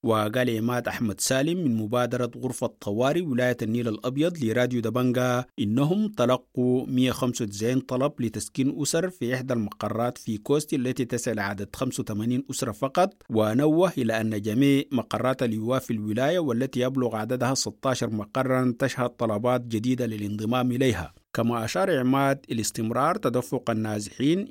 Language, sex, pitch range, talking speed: English, male, 110-130 Hz, 130 wpm